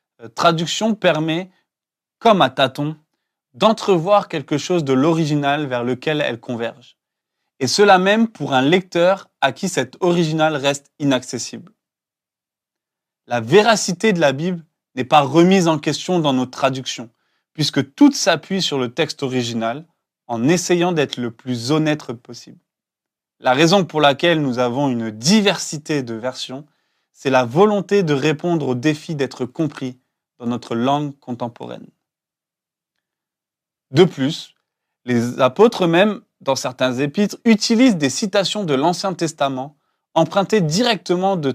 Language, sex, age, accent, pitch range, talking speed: French, male, 20-39, French, 130-180 Hz, 135 wpm